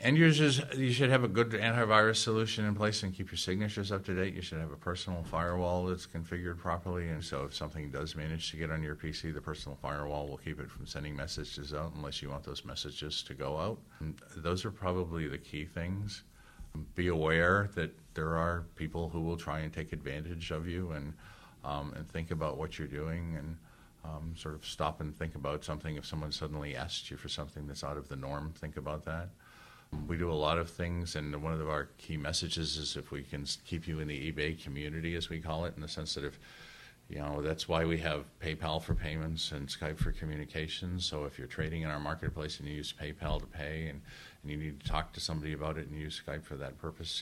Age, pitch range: 50-69, 75-85 Hz